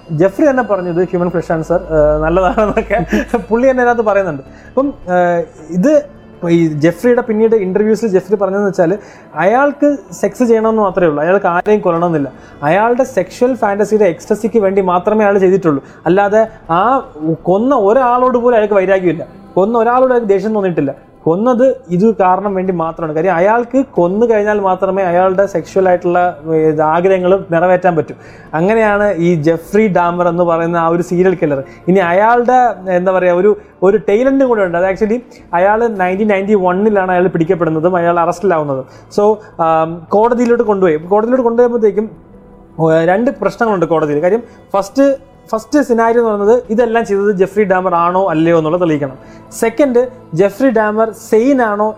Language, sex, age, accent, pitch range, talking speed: Malayalam, male, 20-39, native, 175-225 Hz, 135 wpm